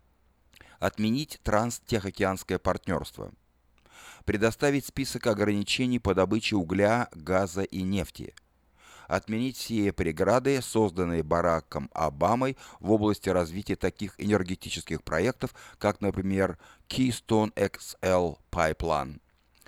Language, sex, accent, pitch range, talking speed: Russian, male, native, 90-115 Hz, 90 wpm